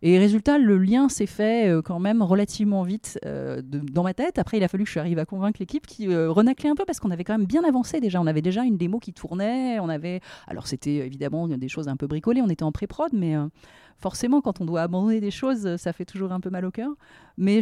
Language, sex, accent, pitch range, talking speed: French, female, French, 155-210 Hz, 260 wpm